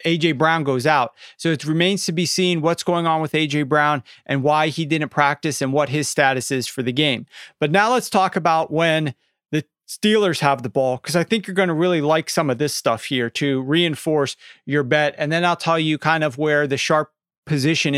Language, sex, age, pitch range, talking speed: English, male, 40-59, 145-180 Hz, 225 wpm